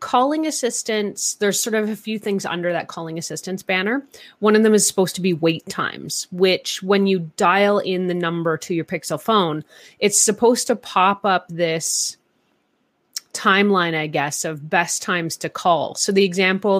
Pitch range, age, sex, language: 170-215 Hz, 30-49, female, English